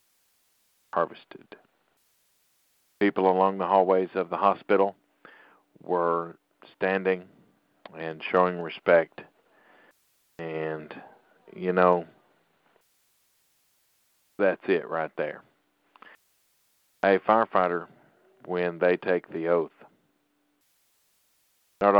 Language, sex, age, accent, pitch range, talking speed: English, male, 50-69, American, 85-95 Hz, 75 wpm